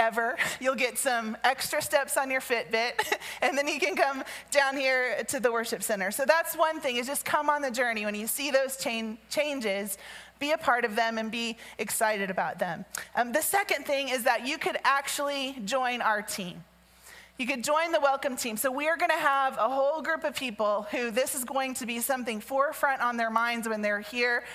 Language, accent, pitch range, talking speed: English, American, 225-275 Hz, 210 wpm